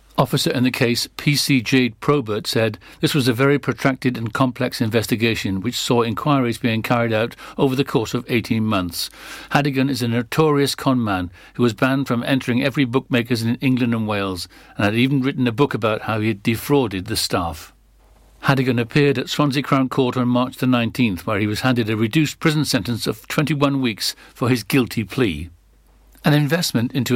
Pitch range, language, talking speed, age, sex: 115-140 Hz, English, 190 wpm, 60-79, male